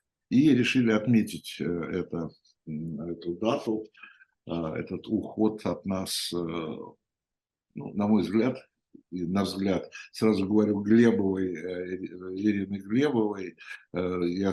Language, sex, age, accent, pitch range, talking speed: Russian, male, 60-79, native, 90-115 Hz, 85 wpm